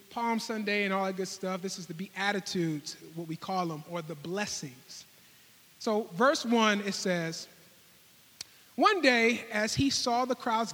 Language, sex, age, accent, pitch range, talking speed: English, male, 30-49, American, 175-230 Hz, 170 wpm